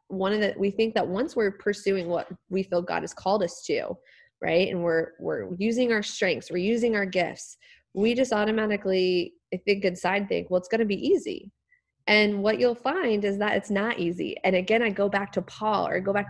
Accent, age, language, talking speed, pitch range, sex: American, 20-39, English, 220 wpm, 185-220 Hz, female